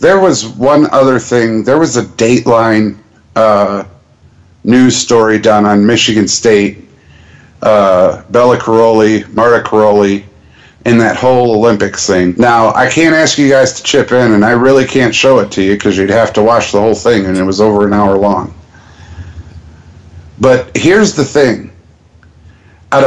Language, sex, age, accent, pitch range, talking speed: English, male, 50-69, American, 100-130 Hz, 165 wpm